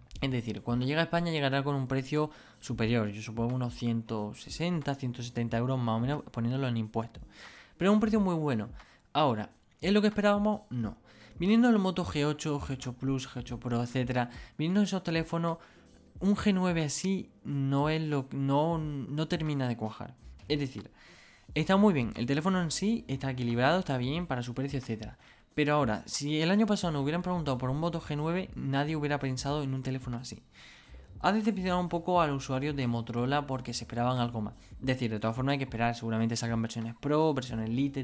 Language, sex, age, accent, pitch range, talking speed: Spanish, male, 20-39, Spanish, 115-155 Hz, 190 wpm